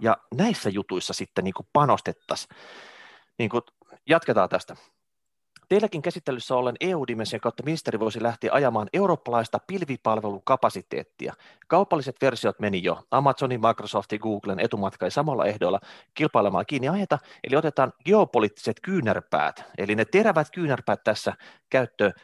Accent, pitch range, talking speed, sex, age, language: native, 110-155 Hz, 115 wpm, male, 30-49, Finnish